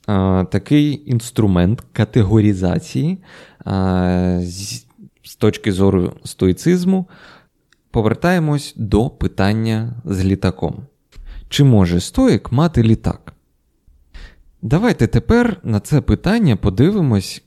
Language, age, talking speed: Ukrainian, 20-39, 80 wpm